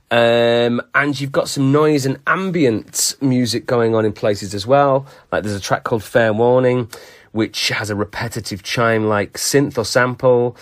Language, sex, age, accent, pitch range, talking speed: English, male, 30-49, British, 105-130 Hz, 170 wpm